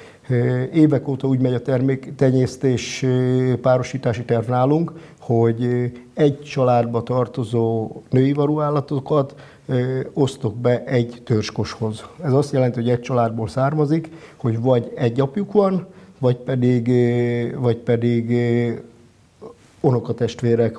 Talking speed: 105 wpm